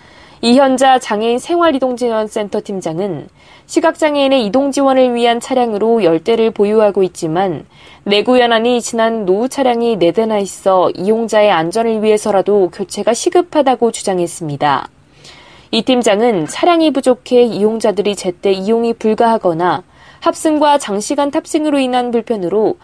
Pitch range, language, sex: 210-265 Hz, Korean, female